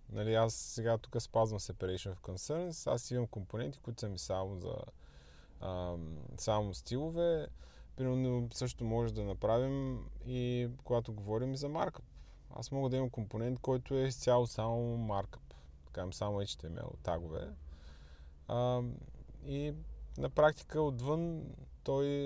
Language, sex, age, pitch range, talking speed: Bulgarian, male, 20-39, 90-130 Hz, 135 wpm